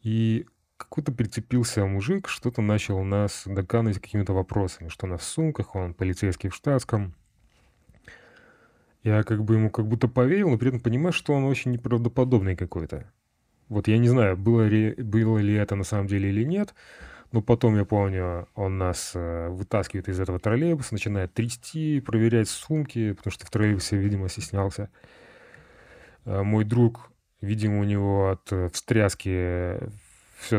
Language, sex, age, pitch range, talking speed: Russian, male, 20-39, 95-115 Hz, 150 wpm